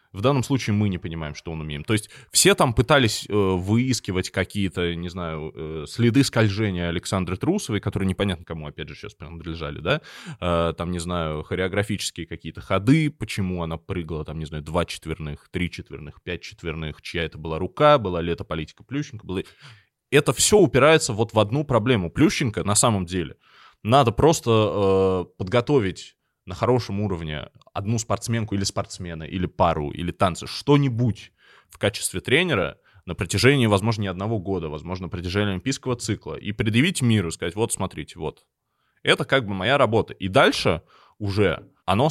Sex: male